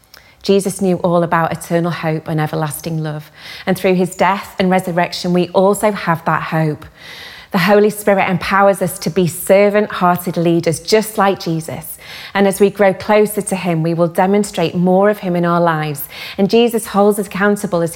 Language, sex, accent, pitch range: English, female, British, 165-200 Hz